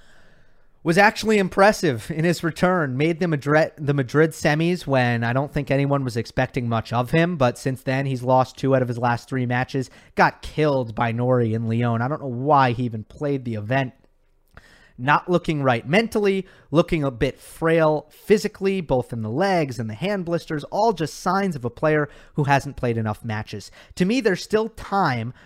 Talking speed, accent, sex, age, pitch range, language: 190 wpm, American, male, 30-49, 125-170 Hz, English